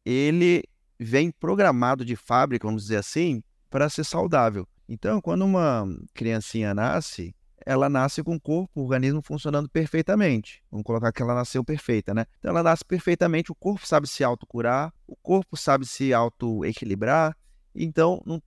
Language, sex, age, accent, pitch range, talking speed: Portuguese, male, 20-39, Brazilian, 120-170 Hz, 155 wpm